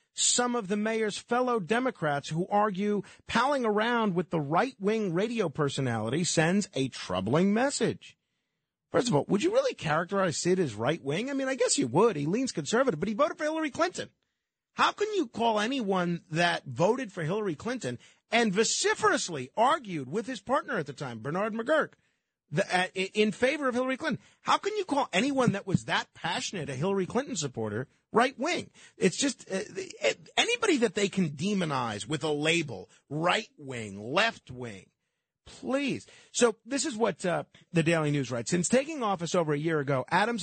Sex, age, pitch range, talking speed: male, 40-59, 145-225 Hz, 180 wpm